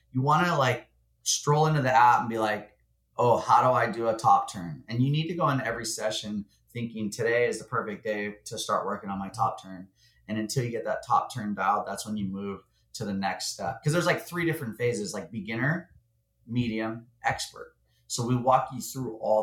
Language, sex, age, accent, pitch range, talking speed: English, male, 30-49, American, 100-125 Hz, 220 wpm